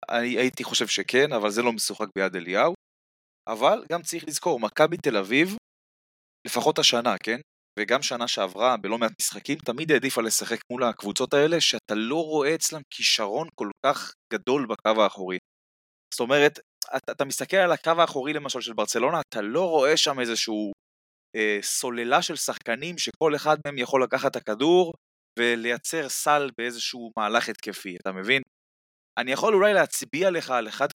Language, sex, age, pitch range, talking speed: Hebrew, male, 20-39, 115-160 Hz, 160 wpm